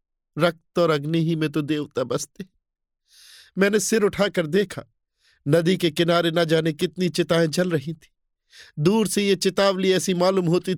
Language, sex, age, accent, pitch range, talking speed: Hindi, male, 50-69, native, 120-165 Hz, 160 wpm